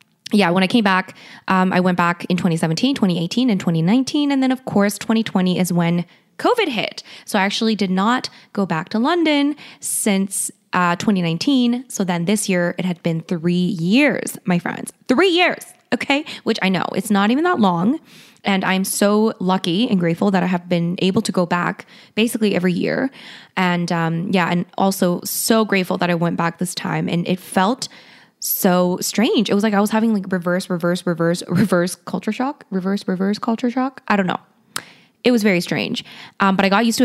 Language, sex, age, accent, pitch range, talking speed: English, female, 20-39, American, 180-230 Hz, 200 wpm